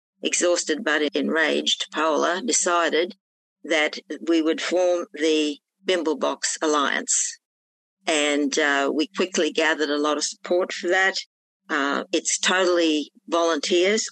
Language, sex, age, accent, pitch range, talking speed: English, female, 50-69, Australian, 150-180 Hz, 115 wpm